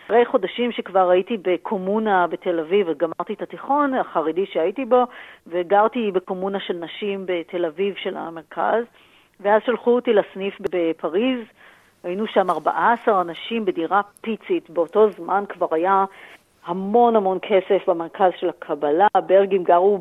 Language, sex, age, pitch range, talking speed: Hebrew, female, 40-59, 180-230 Hz, 125 wpm